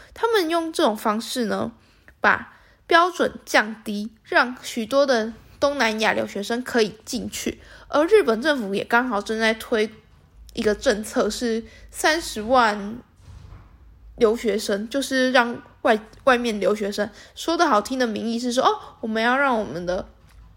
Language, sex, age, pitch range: Chinese, female, 10-29, 215-290 Hz